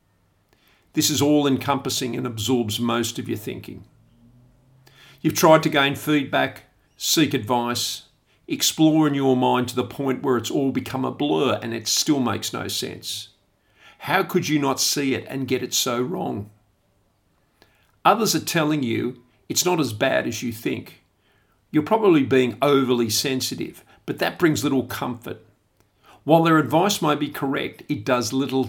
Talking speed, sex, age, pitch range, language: 160 wpm, male, 50-69, 110-140 Hz, English